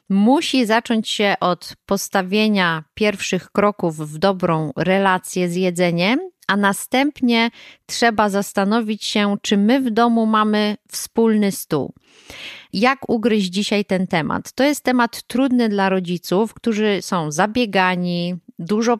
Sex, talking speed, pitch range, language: female, 125 wpm, 180-220 Hz, Polish